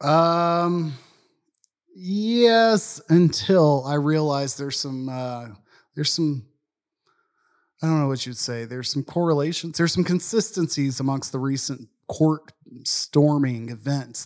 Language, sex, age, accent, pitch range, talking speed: English, male, 30-49, American, 135-165 Hz, 120 wpm